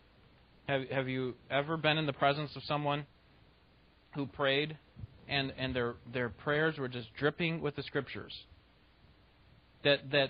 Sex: male